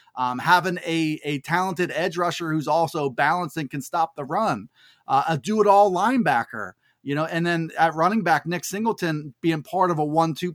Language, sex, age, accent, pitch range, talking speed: English, male, 30-49, American, 140-195 Hz, 190 wpm